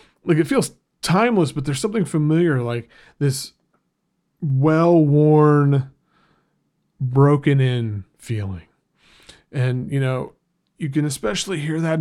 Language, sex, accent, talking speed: English, male, American, 105 wpm